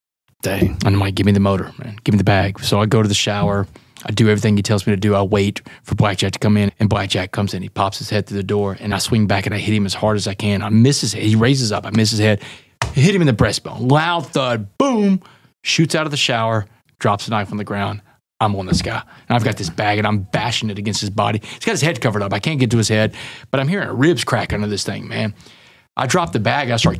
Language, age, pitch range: English, 30-49, 105-125 Hz